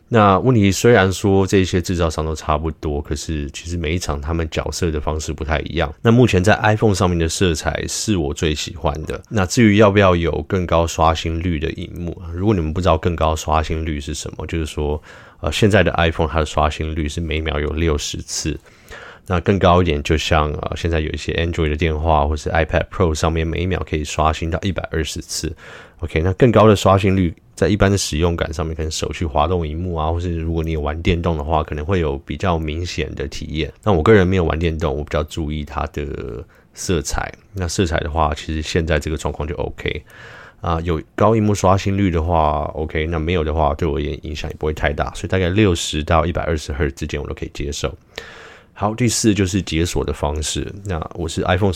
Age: 20-39